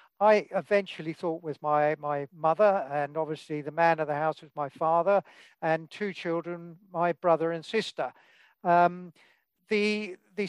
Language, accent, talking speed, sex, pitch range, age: English, British, 155 wpm, male, 170-200 Hz, 50-69